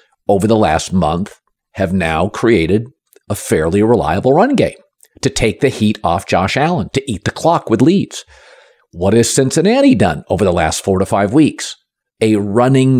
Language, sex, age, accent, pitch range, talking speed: English, male, 50-69, American, 105-140 Hz, 175 wpm